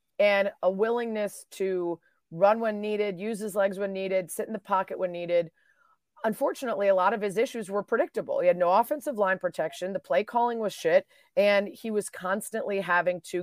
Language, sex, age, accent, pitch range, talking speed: English, female, 30-49, American, 180-220 Hz, 190 wpm